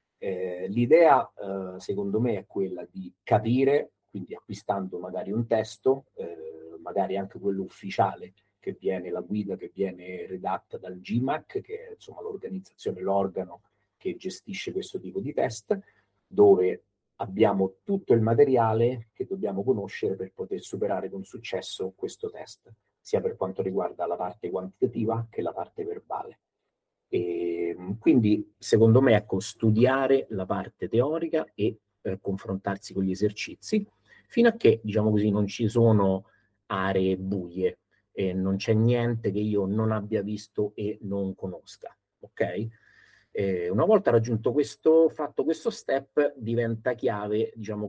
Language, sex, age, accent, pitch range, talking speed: Italian, male, 40-59, native, 95-135 Hz, 145 wpm